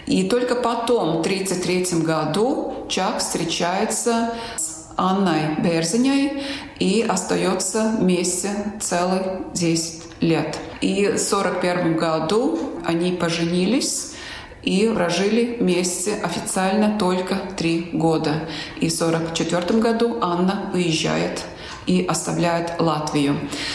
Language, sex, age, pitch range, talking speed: Russian, female, 30-49, 165-205 Hz, 100 wpm